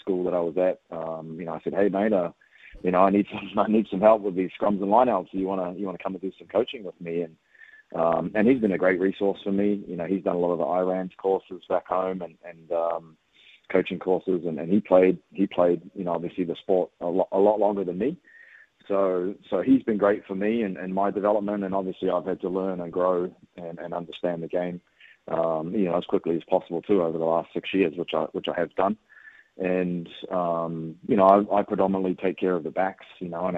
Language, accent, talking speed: English, Australian, 255 wpm